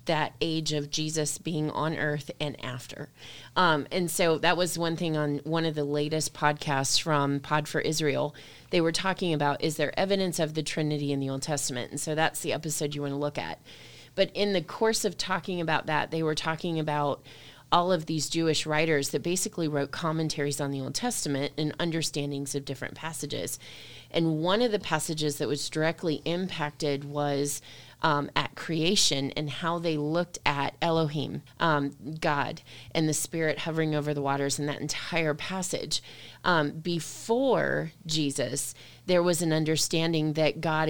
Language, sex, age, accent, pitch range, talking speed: English, female, 30-49, American, 145-165 Hz, 180 wpm